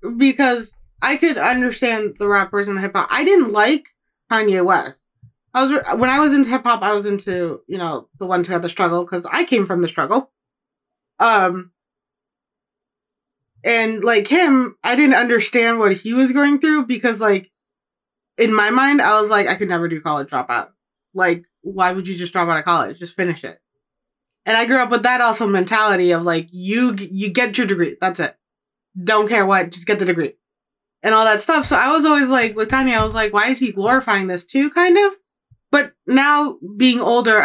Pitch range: 185-250 Hz